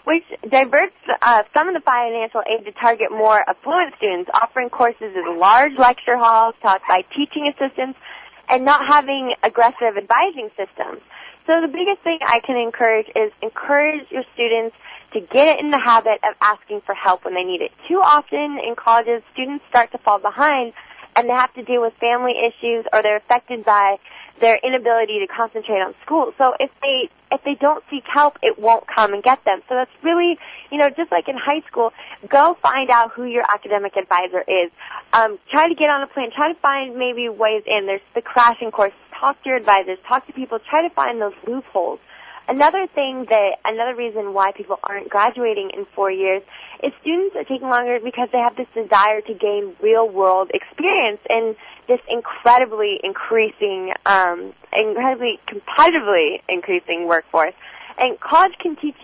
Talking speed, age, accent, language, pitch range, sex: 185 wpm, 20-39, American, English, 220-295 Hz, female